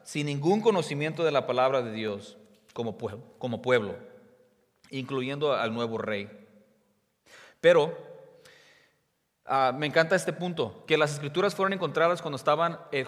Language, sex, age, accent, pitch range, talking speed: English, male, 30-49, Mexican, 130-165 Hz, 130 wpm